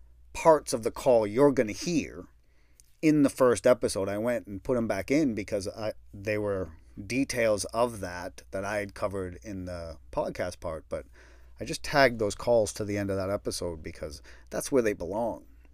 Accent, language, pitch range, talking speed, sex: American, English, 85-125 Hz, 190 wpm, male